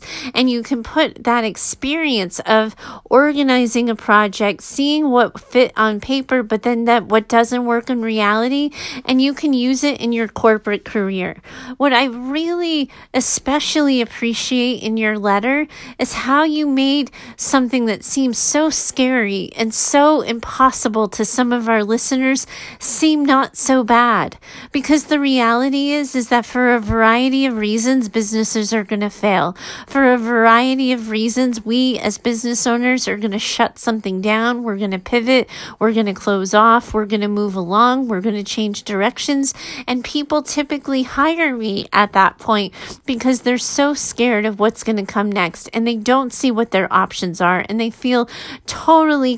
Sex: female